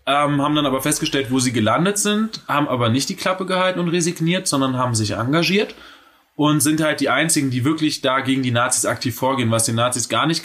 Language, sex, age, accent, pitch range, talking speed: German, male, 20-39, German, 110-150 Hz, 225 wpm